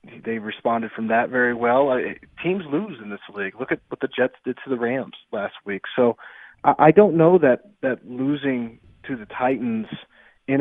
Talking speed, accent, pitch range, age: 190 wpm, American, 110-140 Hz, 30-49